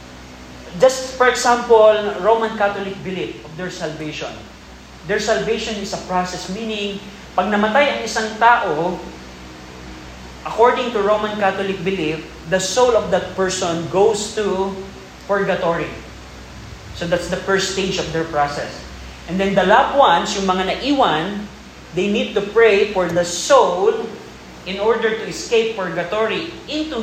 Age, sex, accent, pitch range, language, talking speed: 20-39, male, native, 170-215 Hz, Filipino, 140 wpm